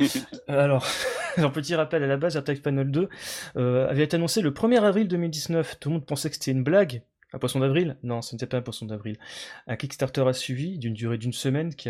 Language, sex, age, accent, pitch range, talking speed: French, male, 30-49, French, 105-135 Hz, 225 wpm